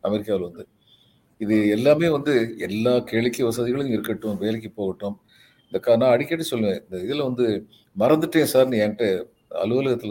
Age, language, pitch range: 50-69, Tamil, 110-155 Hz